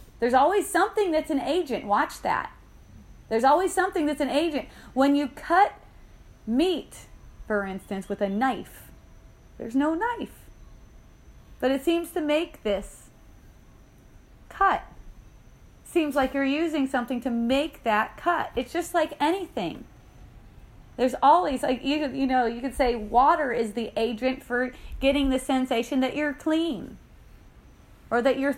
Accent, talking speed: American, 145 wpm